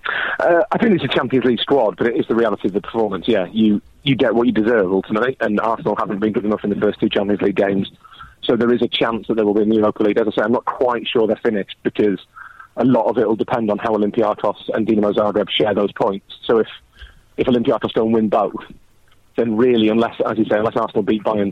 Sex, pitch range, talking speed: male, 105-130 Hz, 255 wpm